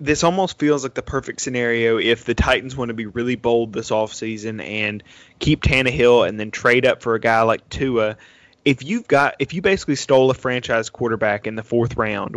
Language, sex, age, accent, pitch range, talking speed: English, male, 20-39, American, 115-130 Hz, 215 wpm